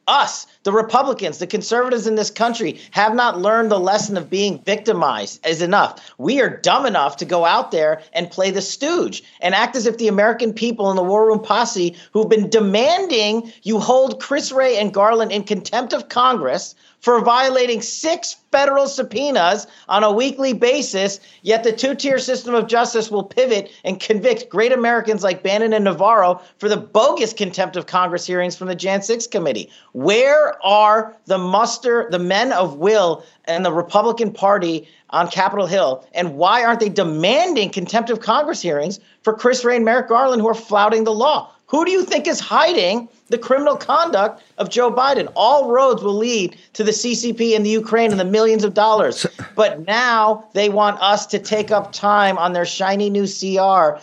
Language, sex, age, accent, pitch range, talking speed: English, male, 40-59, American, 185-235 Hz, 185 wpm